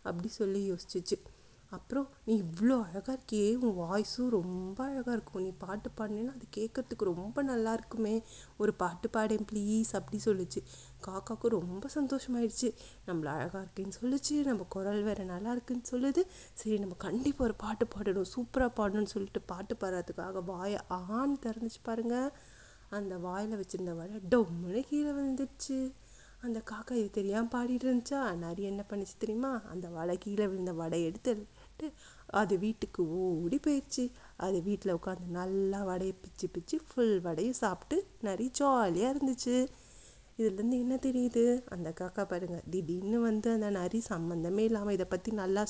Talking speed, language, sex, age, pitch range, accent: 145 wpm, Tamil, female, 30-49, 185-235 Hz, native